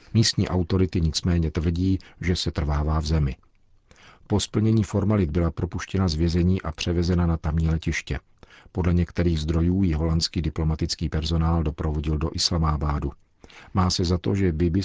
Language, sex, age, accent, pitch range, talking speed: Czech, male, 50-69, native, 80-90 Hz, 150 wpm